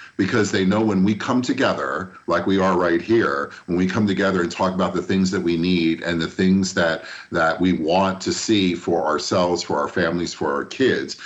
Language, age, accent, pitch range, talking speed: English, 50-69, American, 90-115 Hz, 220 wpm